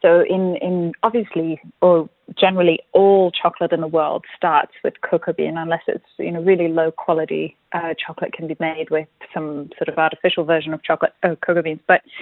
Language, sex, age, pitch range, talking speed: English, female, 20-39, 165-190 Hz, 190 wpm